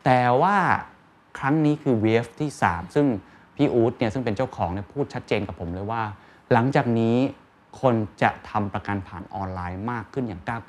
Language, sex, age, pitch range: Thai, male, 20-39, 100-140 Hz